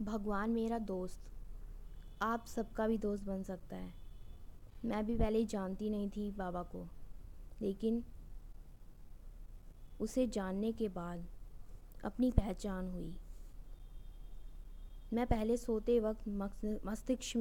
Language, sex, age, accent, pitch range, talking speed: Hindi, female, 20-39, native, 175-225 Hz, 105 wpm